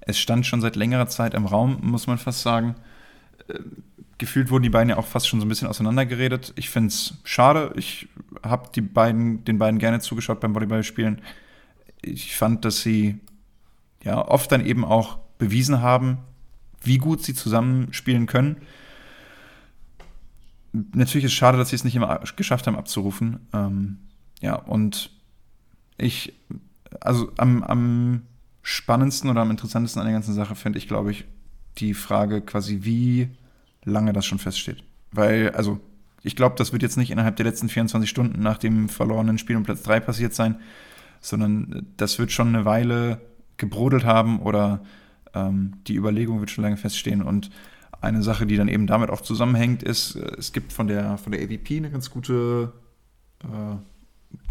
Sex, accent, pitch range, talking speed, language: male, German, 105-120 Hz, 165 wpm, German